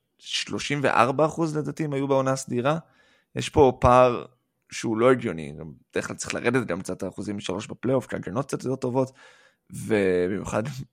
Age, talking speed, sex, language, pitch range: 20-39, 145 wpm, male, Hebrew, 100-135 Hz